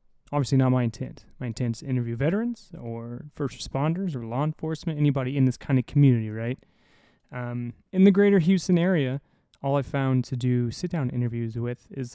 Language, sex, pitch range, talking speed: English, male, 125-150 Hz, 190 wpm